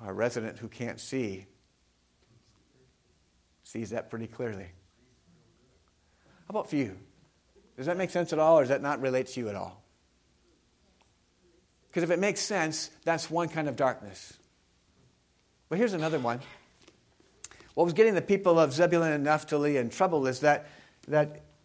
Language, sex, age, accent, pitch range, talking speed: English, male, 50-69, American, 125-175 Hz, 155 wpm